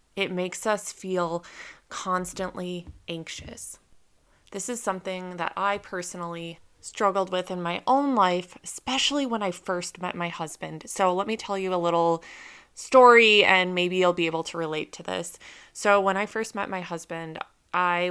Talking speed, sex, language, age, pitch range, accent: 165 wpm, female, English, 20-39, 170-195 Hz, American